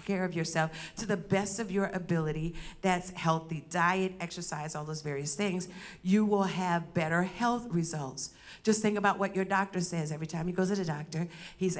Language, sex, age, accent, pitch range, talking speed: English, female, 50-69, American, 170-205 Hz, 190 wpm